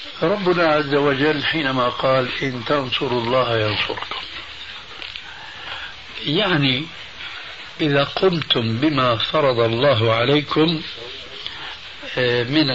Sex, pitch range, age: male, 115-155 Hz, 60-79